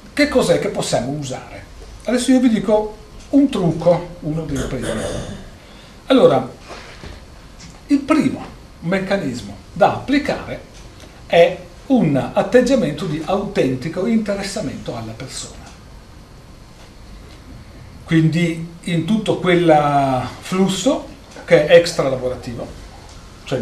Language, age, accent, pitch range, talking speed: Italian, 40-59, native, 125-175 Hz, 95 wpm